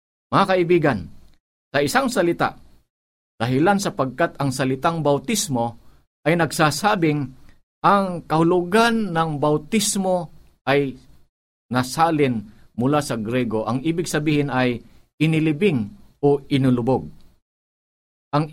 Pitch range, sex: 125-175 Hz, male